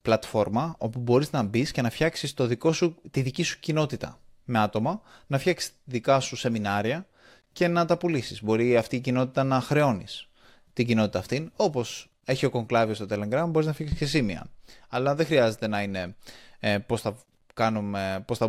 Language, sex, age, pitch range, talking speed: Greek, male, 20-39, 110-150 Hz, 185 wpm